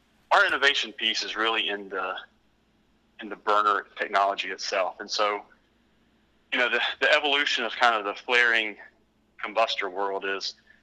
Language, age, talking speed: English, 30-49, 150 wpm